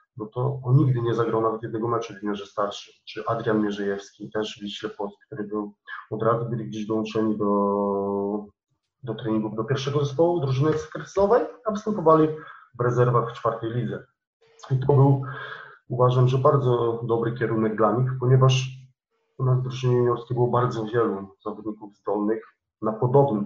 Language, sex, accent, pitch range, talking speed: Polish, male, native, 115-145 Hz, 160 wpm